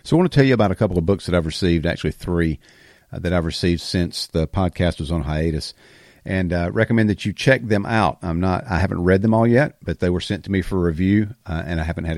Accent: American